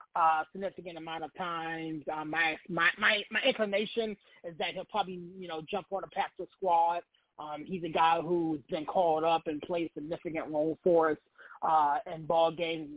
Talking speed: 185 wpm